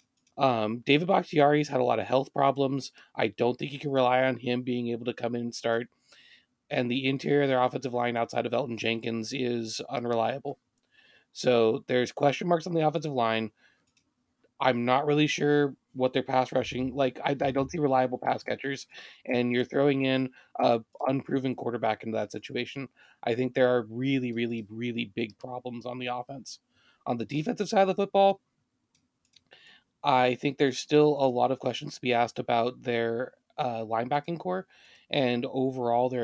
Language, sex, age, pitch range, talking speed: English, male, 20-39, 120-140 Hz, 180 wpm